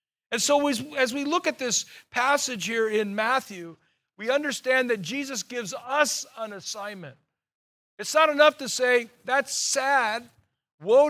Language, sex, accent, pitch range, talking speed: English, male, American, 205-260 Hz, 145 wpm